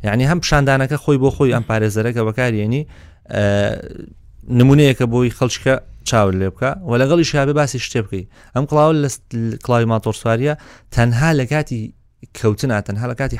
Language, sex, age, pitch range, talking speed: Arabic, male, 30-49, 105-135 Hz, 140 wpm